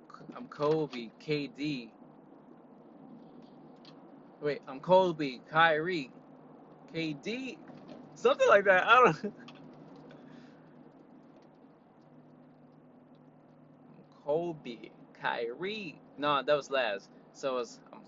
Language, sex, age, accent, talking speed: English, male, 20-39, American, 75 wpm